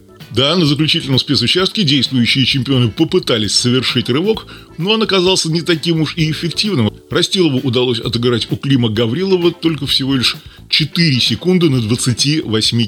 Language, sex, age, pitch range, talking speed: Russian, male, 30-49, 115-160 Hz, 140 wpm